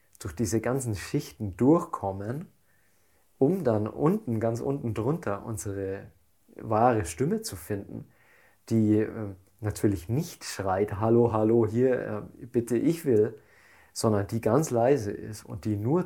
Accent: German